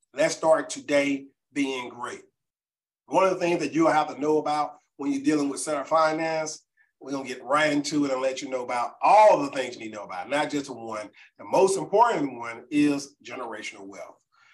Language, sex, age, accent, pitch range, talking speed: English, male, 40-59, American, 140-165 Hz, 210 wpm